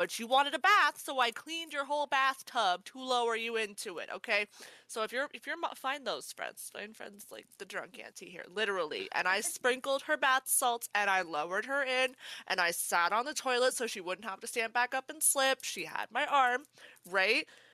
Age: 20-39